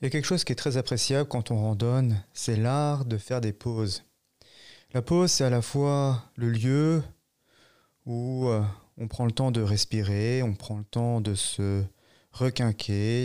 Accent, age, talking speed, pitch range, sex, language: French, 30-49, 180 wpm, 115-145 Hz, male, French